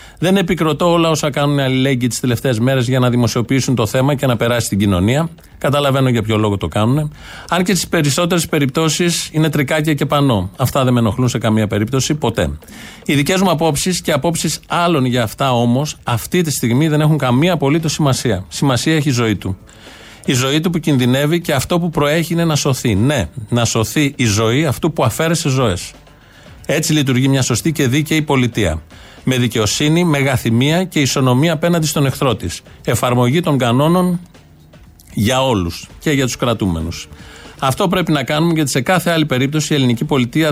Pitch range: 120-155 Hz